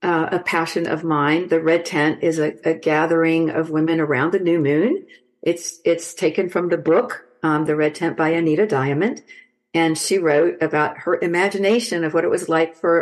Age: 50-69